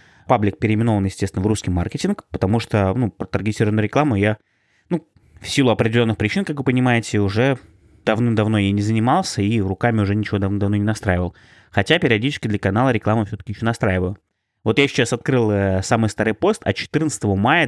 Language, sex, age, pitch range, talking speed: Russian, male, 20-39, 100-125 Hz, 180 wpm